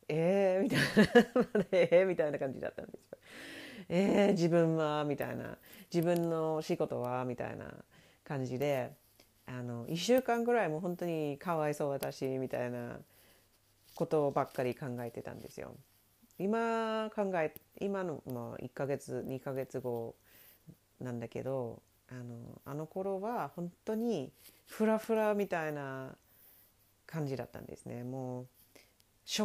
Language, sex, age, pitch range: English, female, 40-59, 120-170 Hz